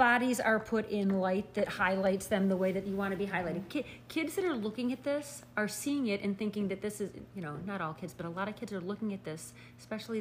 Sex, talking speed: female, 270 wpm